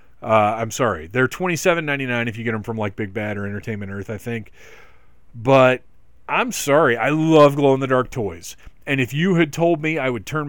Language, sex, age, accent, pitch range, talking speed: English, male, 40-59, American, 110-150 Hz, 230 wpm